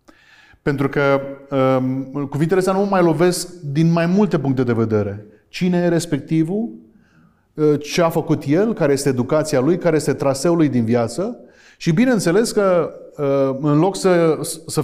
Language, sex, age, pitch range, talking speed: Romanian, male, 30-49, 135-190 Hz, 160 wpm